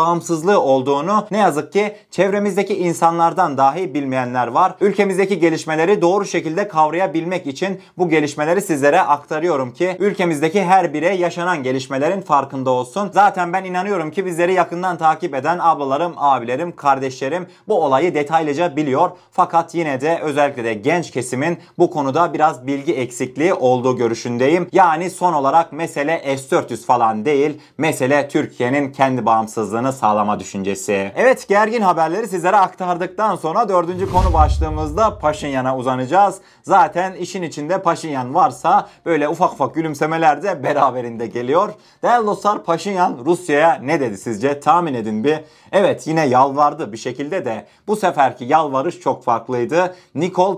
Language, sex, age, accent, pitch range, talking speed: Turkish, male, 30-49, native, 140-180 Hz, 135 wpm